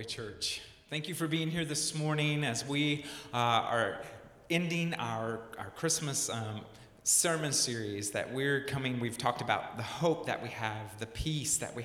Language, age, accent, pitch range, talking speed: English, 30-49, American, 120-150 Hz, 170 wpm